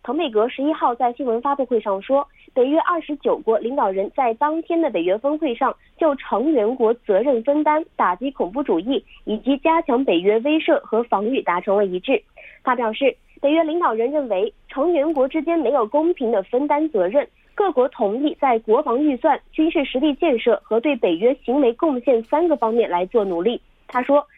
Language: Korean